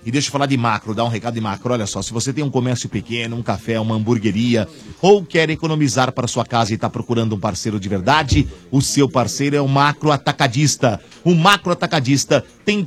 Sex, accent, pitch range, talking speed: male, Brazilian, 130-180 Hz, 220 wpm